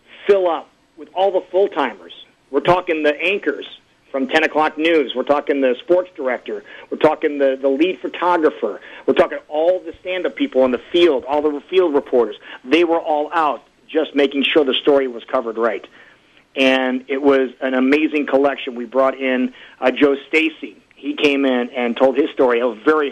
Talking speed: 185 wpm